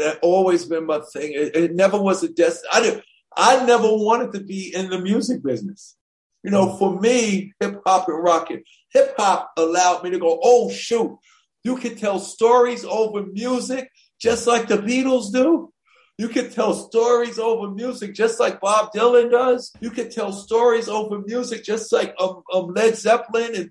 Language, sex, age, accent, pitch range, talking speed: English, male, 50-69, American, 170-225 Hz, 175 wpm